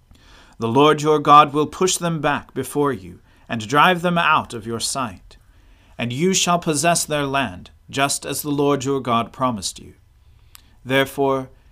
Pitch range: 100-145 Hz